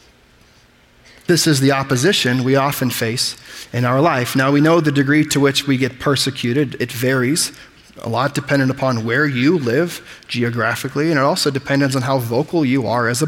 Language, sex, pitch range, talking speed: English, male, 120-145 Hz, 185 wpm